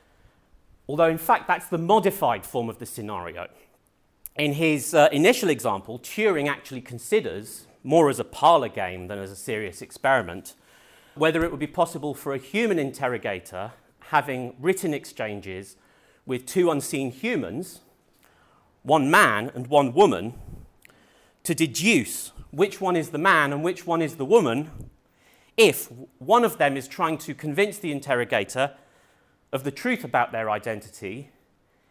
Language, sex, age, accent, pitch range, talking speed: English, male, 40-59, British, 120-170 Hz, 145 wpm